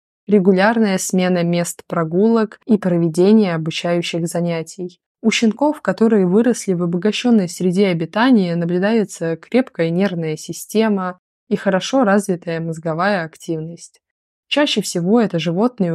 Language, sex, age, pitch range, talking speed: Russian, female, 20-39, 170-210 Hz, 110 wpm